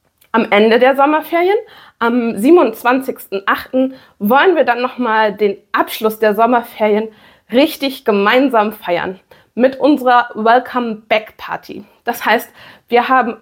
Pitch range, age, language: 210-280 Hz, 20-39, German